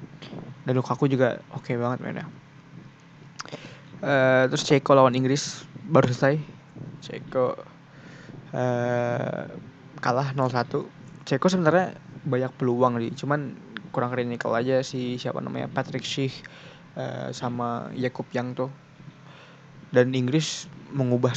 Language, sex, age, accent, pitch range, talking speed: Indonesian, male, 20-39, native, 125-150 Hz, 115 wpm